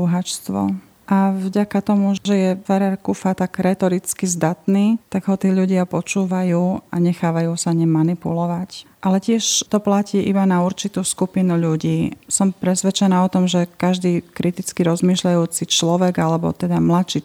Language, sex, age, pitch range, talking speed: Slovak, female, 30-49, 170-190 Hz, 140 wpm